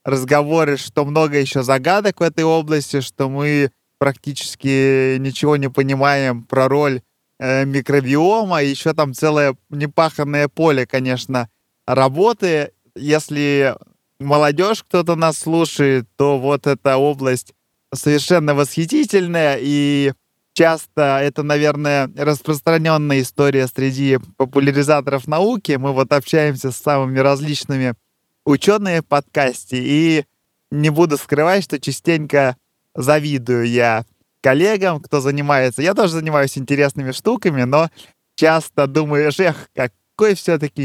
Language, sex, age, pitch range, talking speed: Russian, male, 20-39, 130-150 Hz, 110 wpm